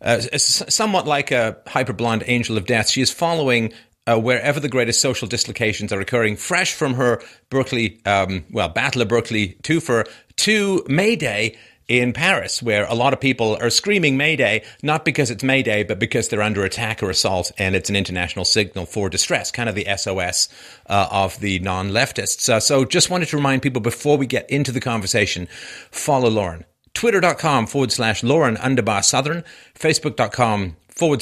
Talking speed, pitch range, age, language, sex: 175 wpm, 110-145 Hz, 40-59, English, male